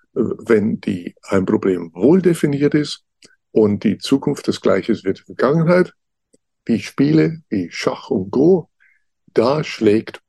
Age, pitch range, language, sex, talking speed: 60-79, 110-180 Hz, German, male, 140 wpm